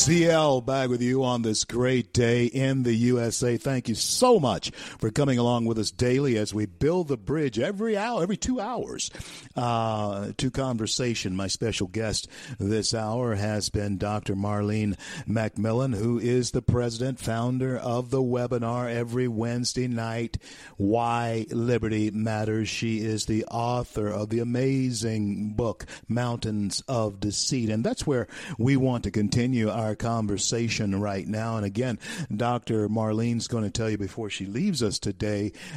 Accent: American